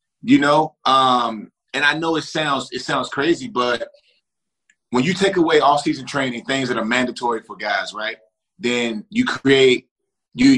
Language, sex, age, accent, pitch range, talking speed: English, male, 30-49, American, 125-180 Hz, 170 wpm